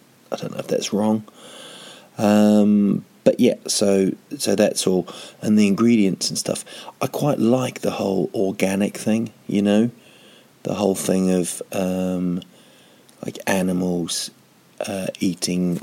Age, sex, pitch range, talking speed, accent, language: 30-49, male, 90-105 Hz, 135 wpm, British, English